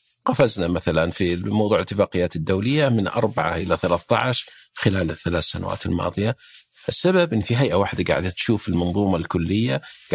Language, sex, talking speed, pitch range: Arabic, male, 135 wpm, 90-120 Hz